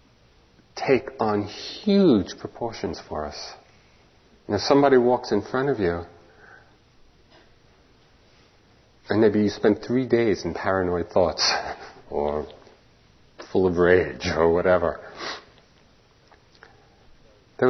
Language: English